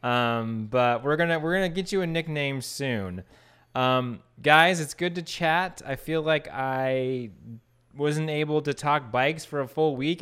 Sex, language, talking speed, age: male, English, 175 wpm, 20-39